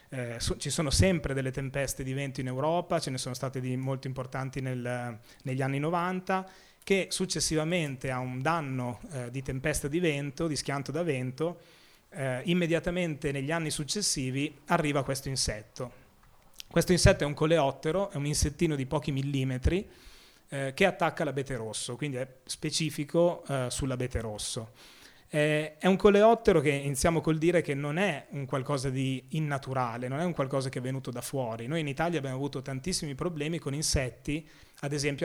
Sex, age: male, 30-49